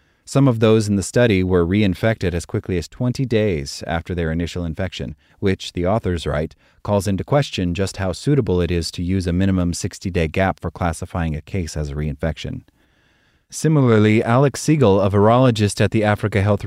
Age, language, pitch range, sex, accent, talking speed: 30-49, English, 85-110 Hz, male, American, 185 wpm